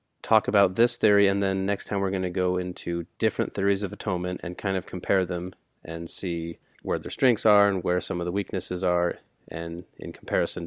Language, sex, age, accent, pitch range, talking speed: English, male, 30-49, American, 95-120 Hz, 215 wpm